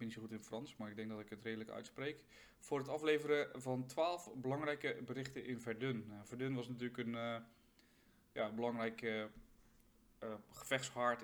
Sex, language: male, Dutch